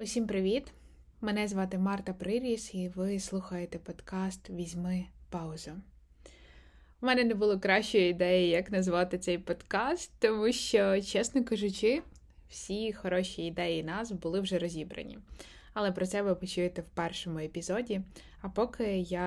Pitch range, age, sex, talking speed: 170-205 Hz, 20-39, female, 135 wpm